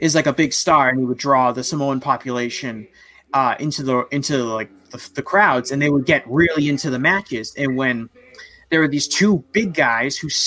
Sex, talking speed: male, 210 wpm